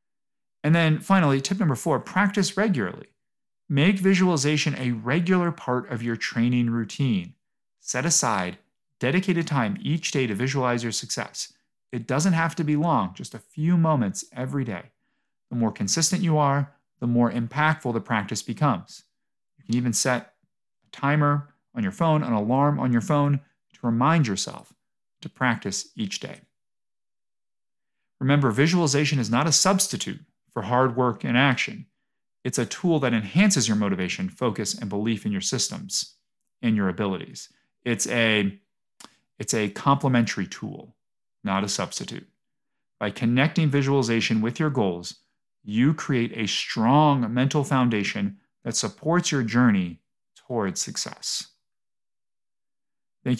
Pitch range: 120-155 Hz